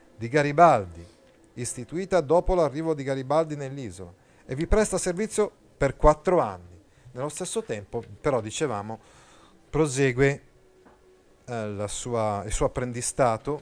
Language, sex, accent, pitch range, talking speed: Italian, male, native, 115-145 Hz, 110 wpm